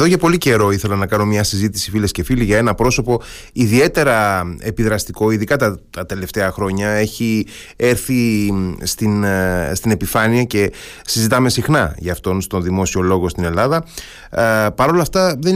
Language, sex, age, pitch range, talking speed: Greek, male, 30-49, 95-125 Hz, 160 wpm